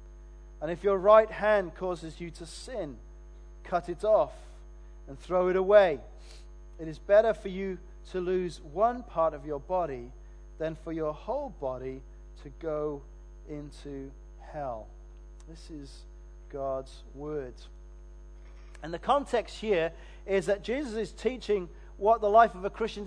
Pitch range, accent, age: 160-205 Hz, British, 40-59